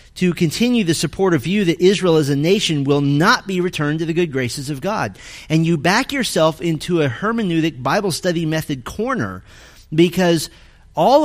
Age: 40-59